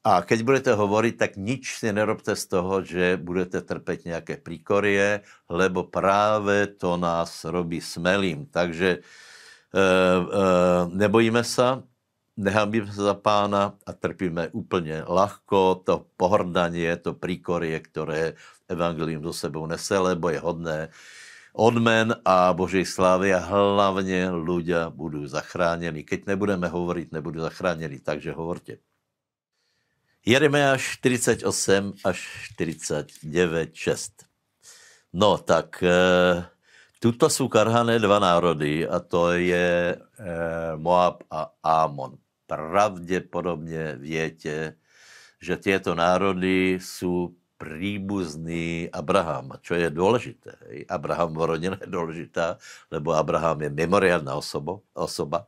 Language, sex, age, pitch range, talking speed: Slovak, male, 60-79, 85-100 Hz, 110 wpm